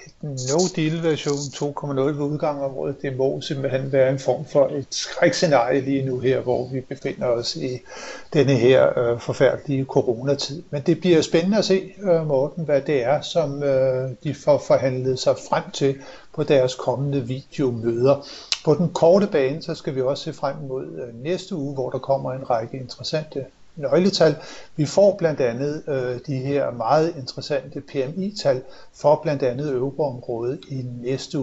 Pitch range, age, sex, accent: 130-160 Hz, 60-79, male, native